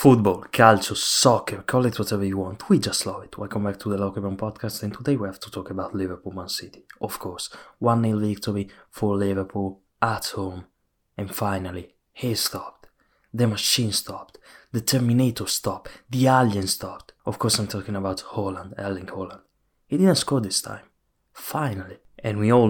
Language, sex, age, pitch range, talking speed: English, male, 20-39, 95-110 Hz, 175 wpm